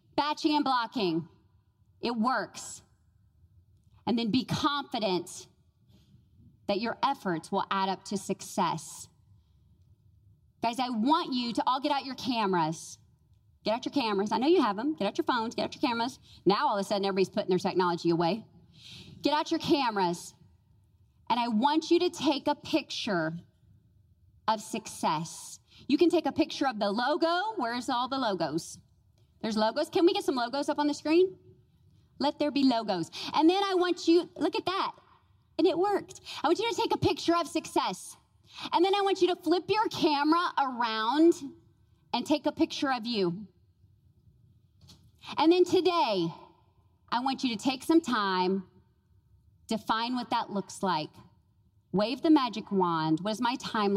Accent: American